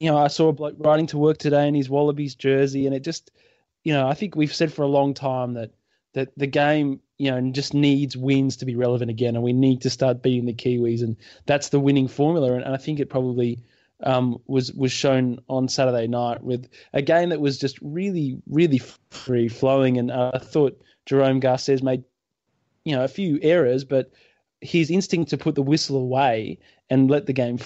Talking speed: 215 wpm